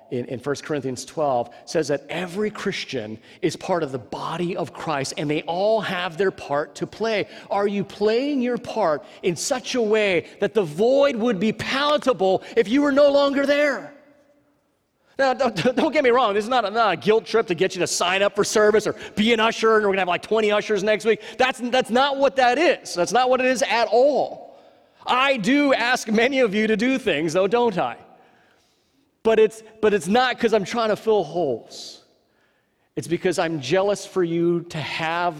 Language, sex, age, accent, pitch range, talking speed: English, male, 30-49, American, 180-245 Hz, 210 wpm